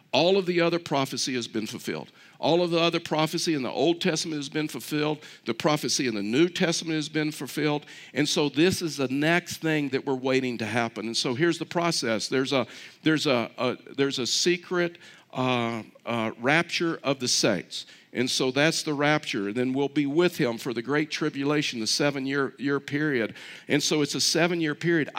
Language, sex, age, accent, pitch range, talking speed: English, male, 50-69, American, 130-160 Hz, 190 wpm